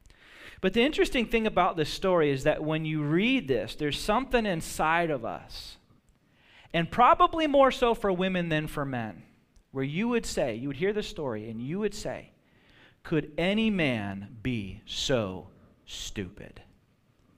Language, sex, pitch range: English, male, 150-210 Hz